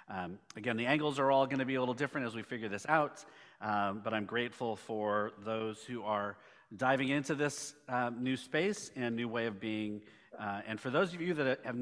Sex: male